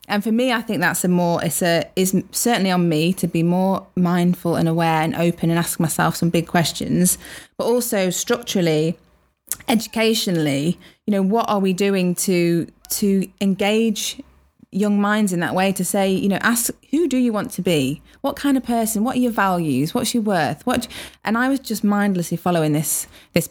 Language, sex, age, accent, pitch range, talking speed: English, female, 20-39, British, 170-205 Hz, 195 wpm